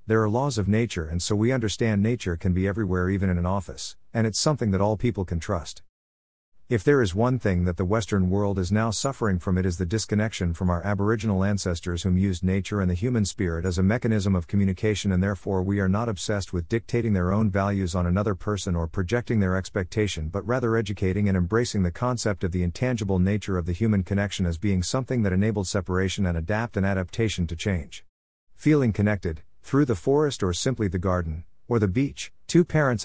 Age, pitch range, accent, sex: 50-69, 90-115 Hz, American, male